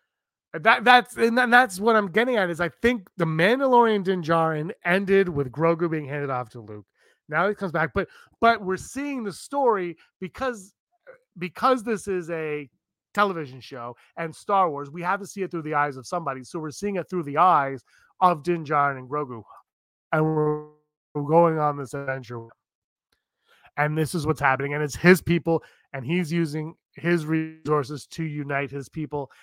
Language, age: English, 30-49